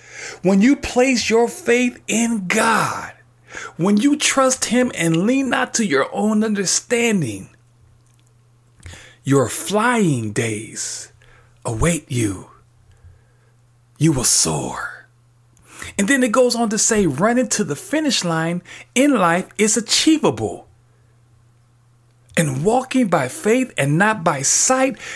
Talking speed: 120 wpm